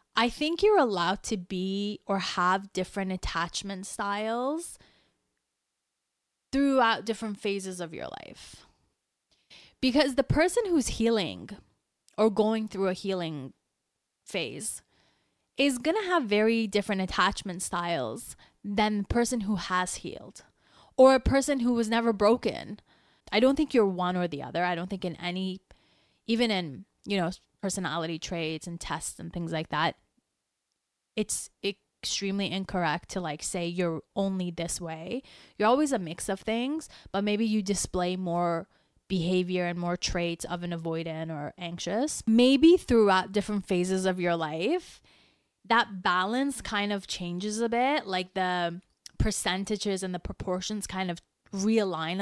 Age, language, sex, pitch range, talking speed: 20-39, English, female, 180-235 Hz, 145 wpm